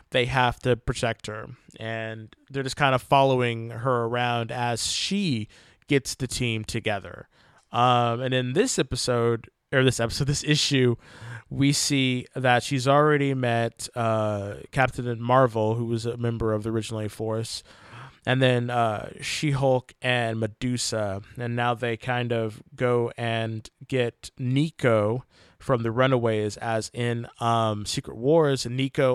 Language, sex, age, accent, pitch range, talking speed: English, male, 20-39, American, 115-130 Hz, 145 wpm